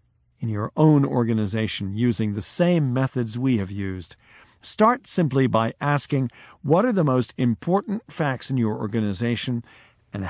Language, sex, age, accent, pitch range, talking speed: English, male, 50-69, American, 105-145 Hz, 145 wpm